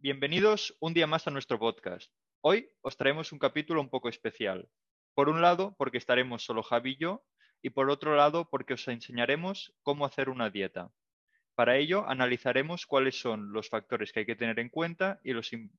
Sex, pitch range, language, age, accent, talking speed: male, 115-140 Hz, Spanish, 20-39, Spanish, 190 wpm